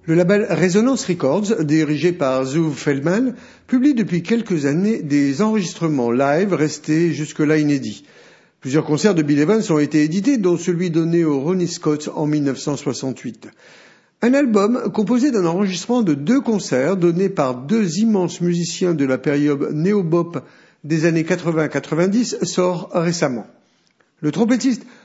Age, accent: 50-69, French